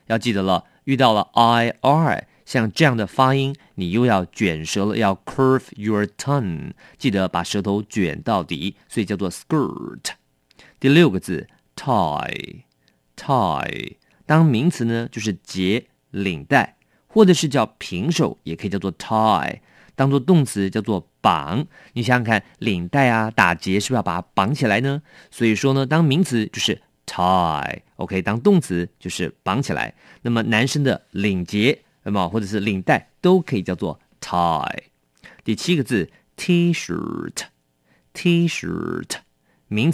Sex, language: male, English